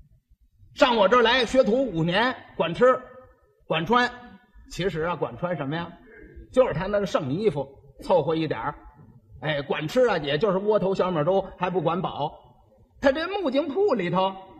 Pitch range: 165-260 Hz